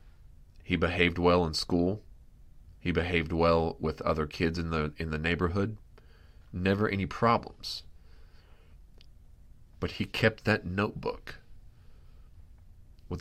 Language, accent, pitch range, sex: English, American, 80-90 Hz, male